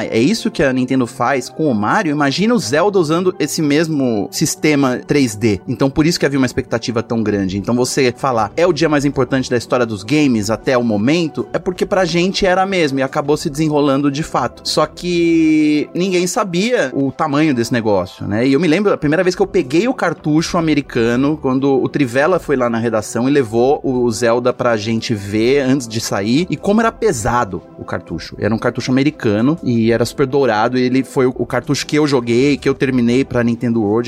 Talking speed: 215 wpm